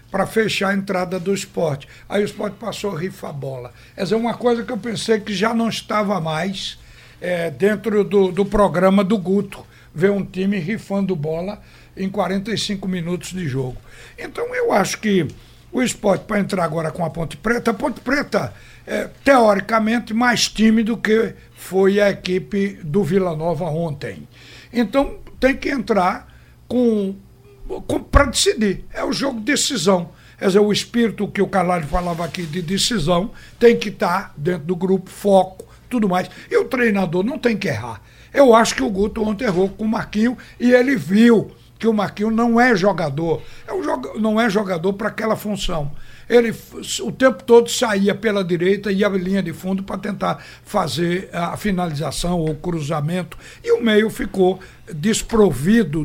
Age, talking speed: 60-79, 170 wpm